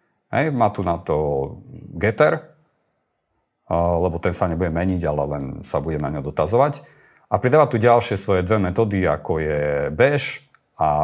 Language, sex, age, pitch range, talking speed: Slovak, male, 40-59, 90-120 Hz, 160 wpm